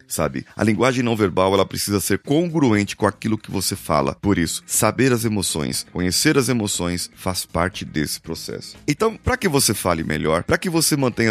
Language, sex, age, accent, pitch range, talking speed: Portuguese, male, 30-49, Brazilian, 90-120 Hz, 190 wpm